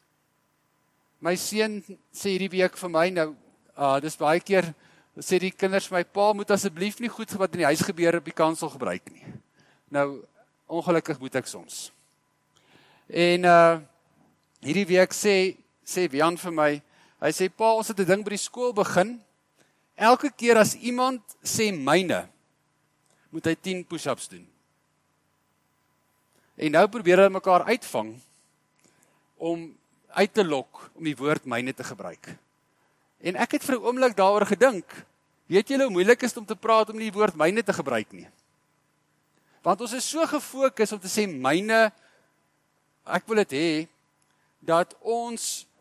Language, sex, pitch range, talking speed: English, male, 160-215 Hz, 150 wpm